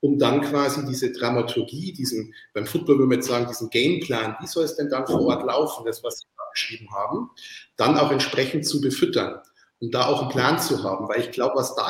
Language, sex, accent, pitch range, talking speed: German, male, German, 135-175 Hz, 230 wpm